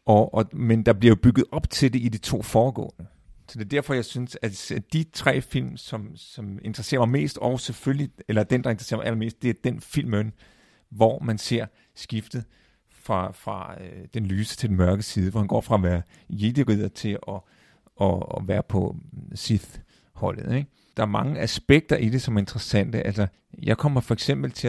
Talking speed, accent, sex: 195 wpm, native, male